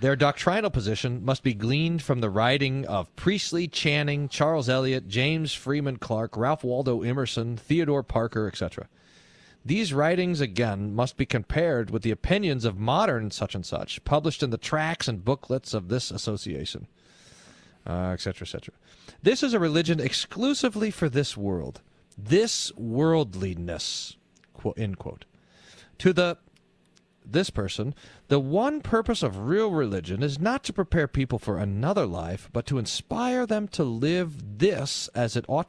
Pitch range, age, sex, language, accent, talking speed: 110-160 Hz, 40-59, male, English, American, 150 wpm